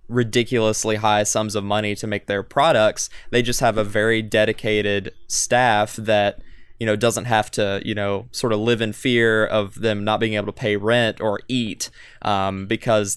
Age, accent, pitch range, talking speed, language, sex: 20-39, American, 105-120 Hz, 185 wpm, English, male